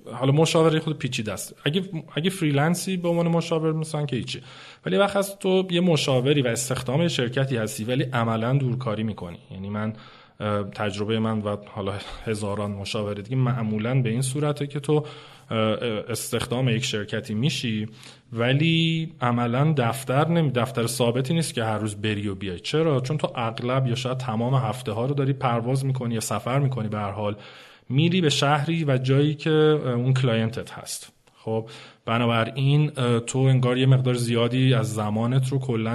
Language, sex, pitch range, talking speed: Persian, male, 110-140 Hz, 160 wpm